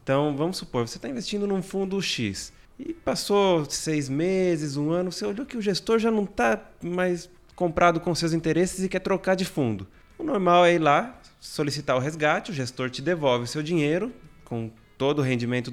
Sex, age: male, 20-39